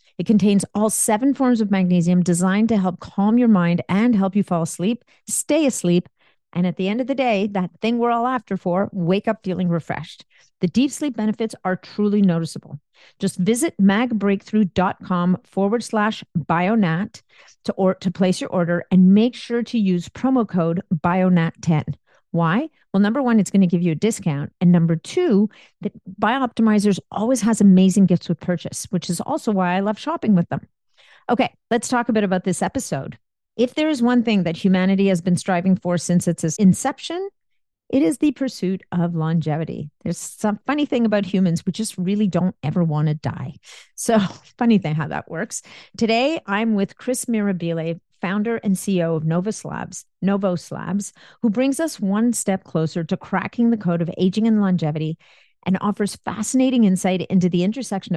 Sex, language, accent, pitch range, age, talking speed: female, English, American, 175-225 Hz, 40-59, 180 wpm